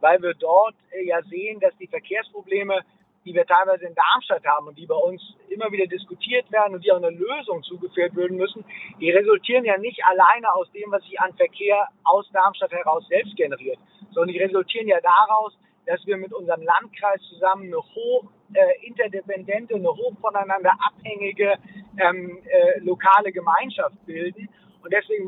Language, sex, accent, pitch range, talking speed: German, male, German, 190-255 Hz, 170 wpm